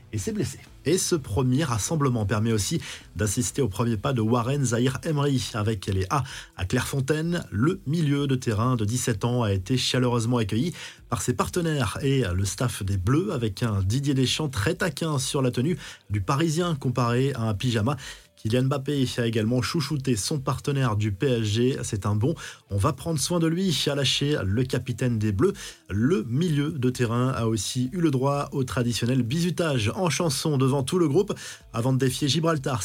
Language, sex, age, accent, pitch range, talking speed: French, male, 20-39, French, 120-155 Hz, 185 wpm